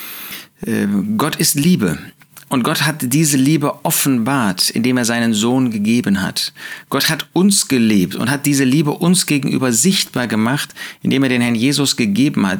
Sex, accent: male, German